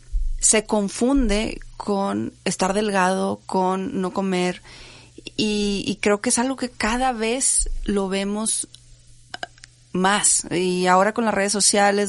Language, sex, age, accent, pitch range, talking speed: Spanish, female, 30-49, Mexican, 180-230 Hz, 130 wpm